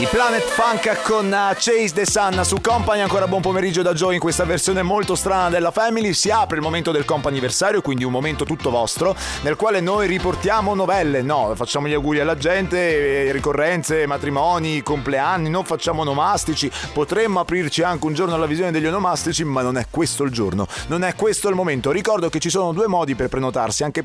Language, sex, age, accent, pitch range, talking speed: Italian, male, 30-49, native, 135-180 Hz, 195 wpm